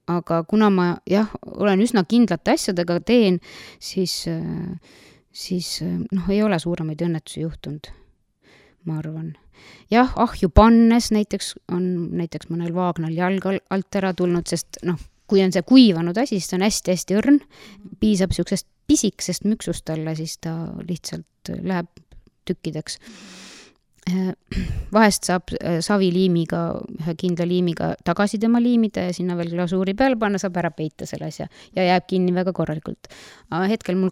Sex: female